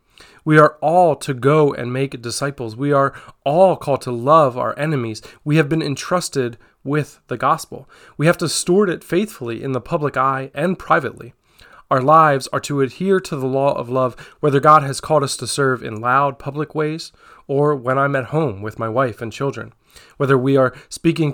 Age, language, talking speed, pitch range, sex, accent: 20-39, English, 195 wpm, 125-155 Hz, male, American